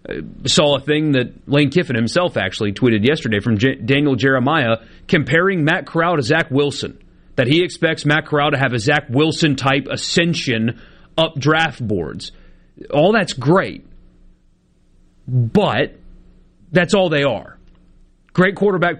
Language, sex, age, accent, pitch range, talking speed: English, male, 40-59, American, 135-185 Hz, 140 wpm